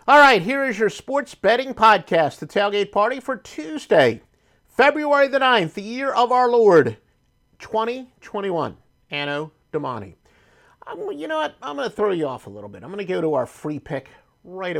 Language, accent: English, American